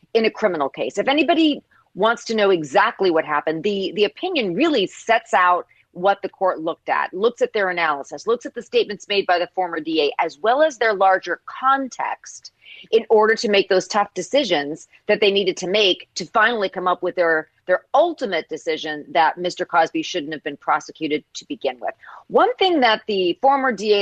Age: 40-59